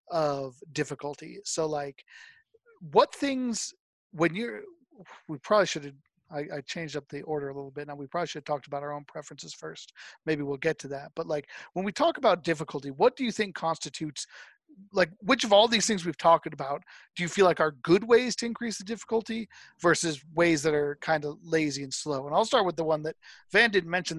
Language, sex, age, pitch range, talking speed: English, male, 40-59, 150-180 Hz, 220 wpm